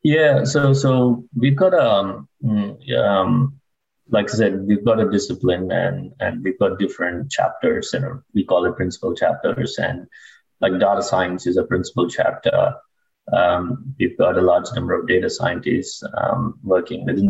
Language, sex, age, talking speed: English, male, 20-39, 165 wpm